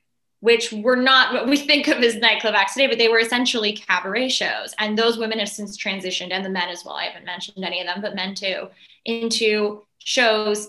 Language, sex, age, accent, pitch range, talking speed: English, female, 20-39, American, 195-235 Hz, 220 wpm